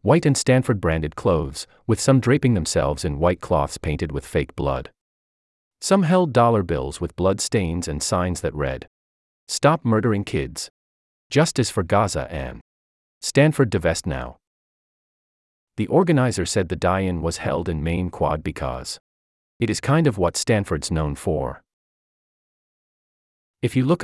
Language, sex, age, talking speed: English, male, 40-59, 145 wpm